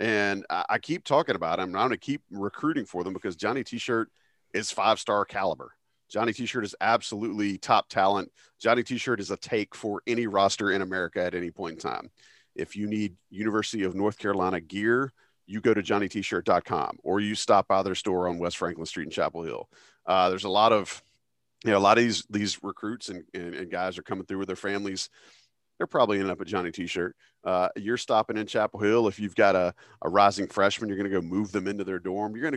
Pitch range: 95-115 Hz